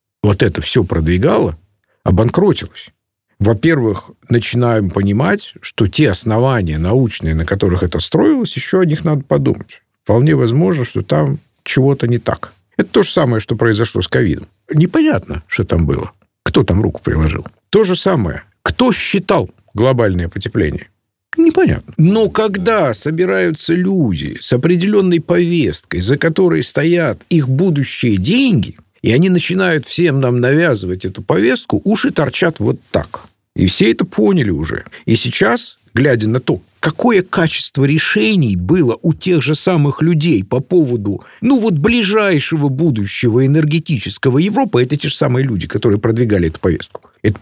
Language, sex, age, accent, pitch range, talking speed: Russian, male, 50-69, native, 110-170 Hz, 145 wpm